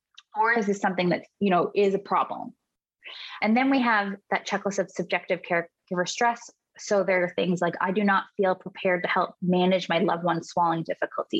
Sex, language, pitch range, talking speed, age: female, English, 180-215 Hz, 200 wpm, 20-39